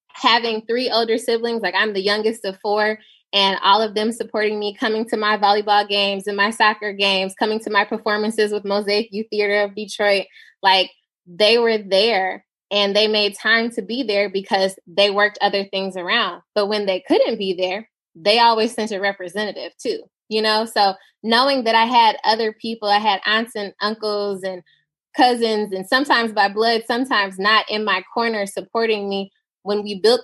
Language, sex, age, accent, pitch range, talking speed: English, female, 10-29, American, 195-225 Hz, 185 wpm